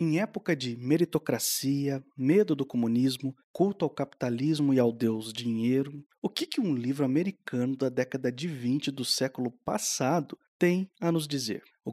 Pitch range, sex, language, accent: 135-190 Hz, male, Portuguese, Brazilian